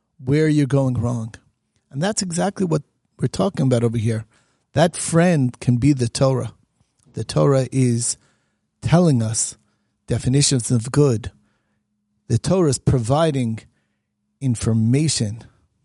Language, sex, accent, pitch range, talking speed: English, male, American, 115-160 Hz, 125 wpm